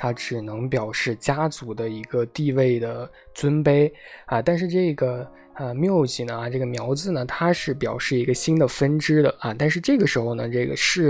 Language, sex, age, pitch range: Chinese, male, 20-39, 120-150 Hz